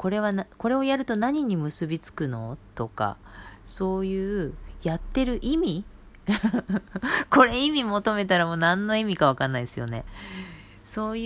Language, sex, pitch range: Japanese, female, 115-190 Hz